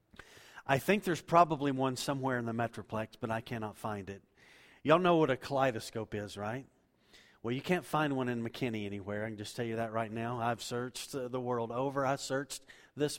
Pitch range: 115-145 Hz